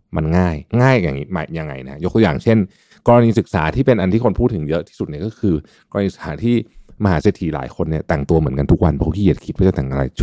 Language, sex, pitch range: Thai, male, 80-110 Hz